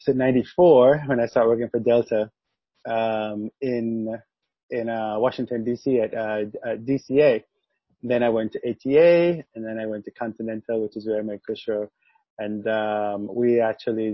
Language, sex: English, male